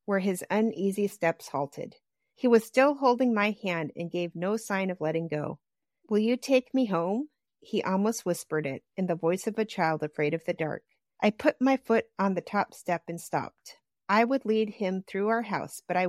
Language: English